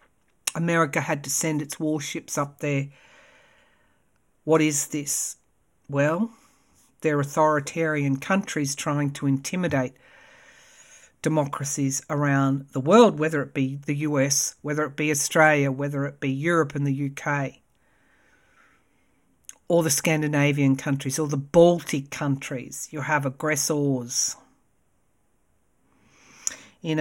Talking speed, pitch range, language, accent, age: 110 wpm, 140-175 Hz, English, Australian, 50-69